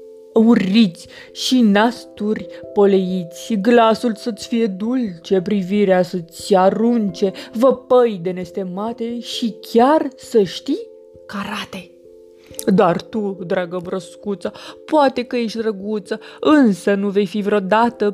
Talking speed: 105 wpm